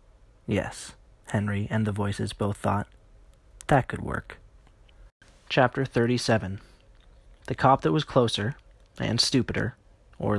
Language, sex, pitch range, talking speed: English, male, 105-120 Hz, 115 wpm